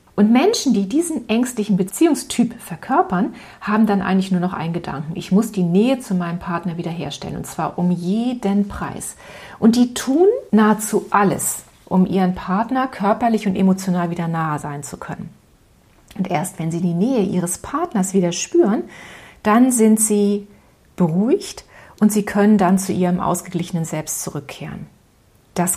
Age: 40-59